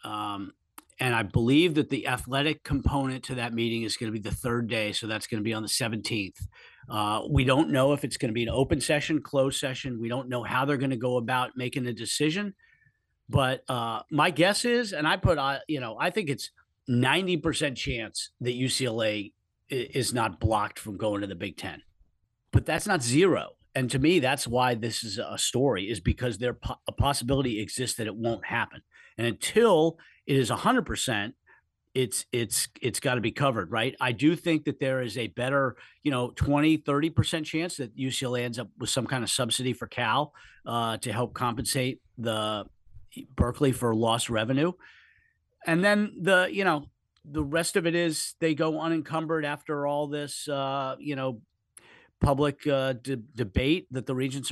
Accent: American